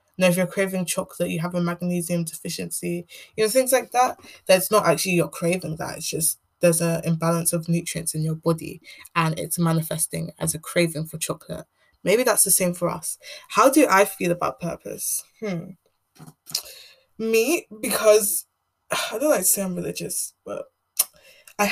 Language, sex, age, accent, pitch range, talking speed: English, female, 20-39, British, 170-205 Hz, 175 wpm